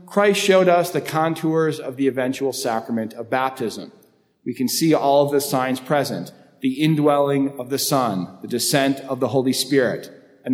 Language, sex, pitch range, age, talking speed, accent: English, male, 125-160 Hz, 40-59, 175 wpm, American